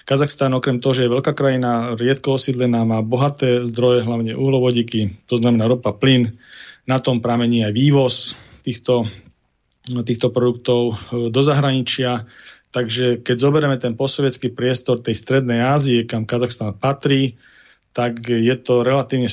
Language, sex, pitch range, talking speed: Slovak, male, 120-135 Hz, 135 wpm